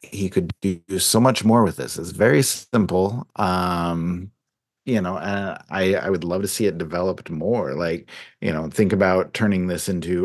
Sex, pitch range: male, 85-110 Hz